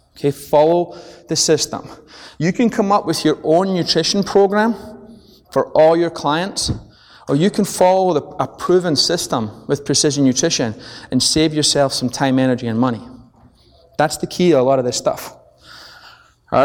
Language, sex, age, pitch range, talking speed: English, male, 20-39, 125-155 Hz, 165 wpm